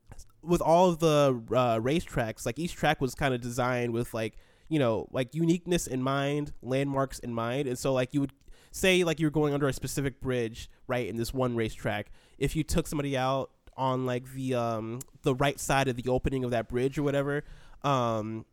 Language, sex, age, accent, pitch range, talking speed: English, male, 20-39, American, 125-150 Hz, 205 wpm